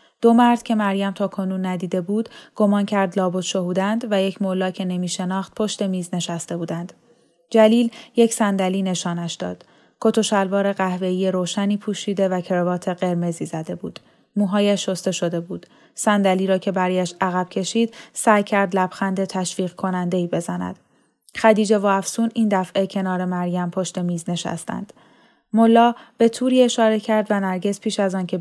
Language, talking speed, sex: Persian, 150 wpm, female